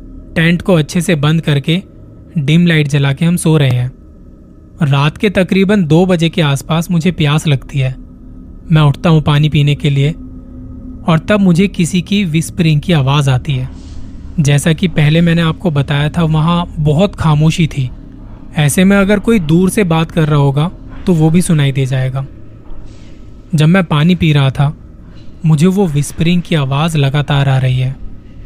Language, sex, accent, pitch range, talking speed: Hindi, male, native, 135-170 Hz, 175 wpm